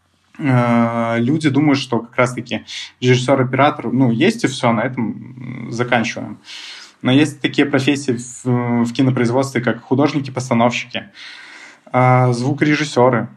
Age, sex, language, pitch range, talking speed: 20-39, male, Russian, 115-135 Hz, 105 wpm